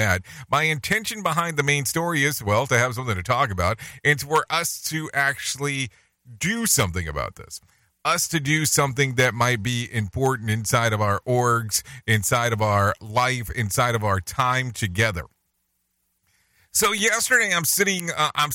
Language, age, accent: English, 40-59, American